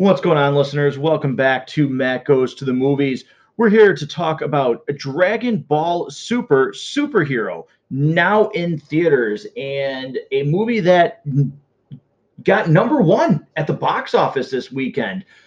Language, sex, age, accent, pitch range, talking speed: English, male, 30-49, American, 130-195 Hz, 145 wpm